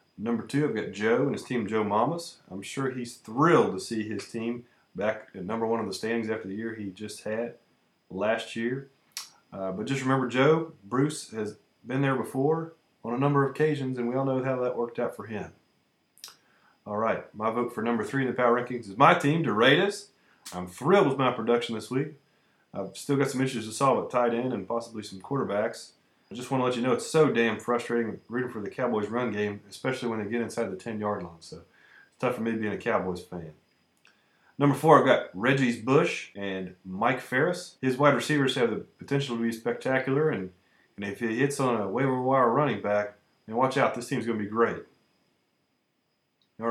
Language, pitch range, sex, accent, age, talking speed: English, 110-135 Hz, male, American, 30-49, 215 wpm